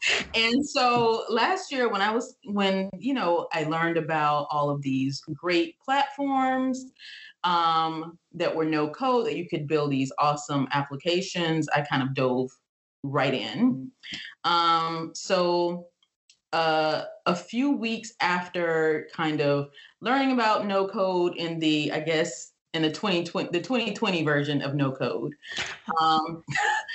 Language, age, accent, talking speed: English, 30-49, American, 140 wpm